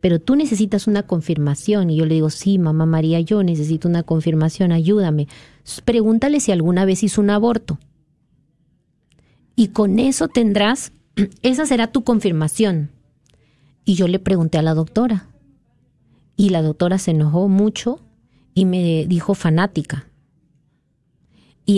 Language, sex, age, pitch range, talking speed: Spanish, female, 40-59, 160-205 Hz, 140 wpm